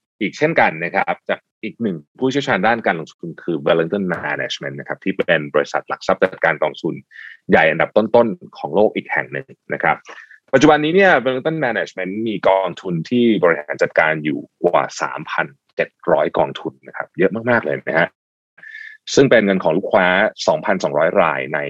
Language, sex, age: Thai, male, 30-49